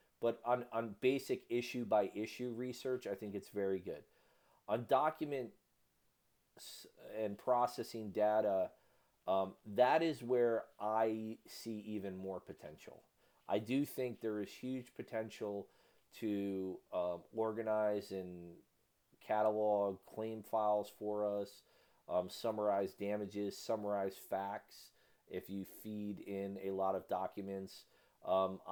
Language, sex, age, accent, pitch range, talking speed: English, male, 40-59, American, 100-115 Hz, 115 wpm